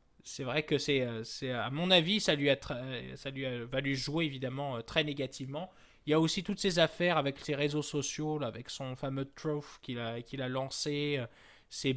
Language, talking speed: French, 215 wpm